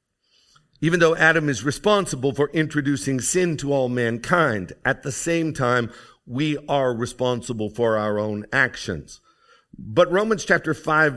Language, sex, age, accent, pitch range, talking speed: English, male, 50-69, American, 130-160 Hz, 140 wpm